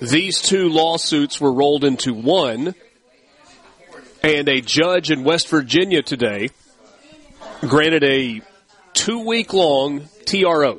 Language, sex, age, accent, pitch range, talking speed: English, male, 40-59, American, 135-170 Hz, 100 wpm